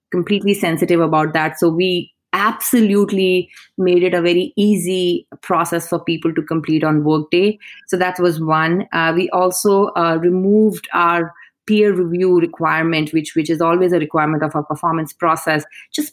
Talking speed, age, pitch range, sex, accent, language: 160 wpm, 30-49, 160-190 Hz, female, Indian, English